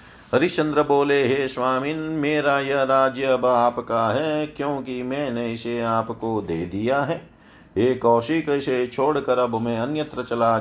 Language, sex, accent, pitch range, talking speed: Hindi, male, native, 110-135 Hz, 135 wpm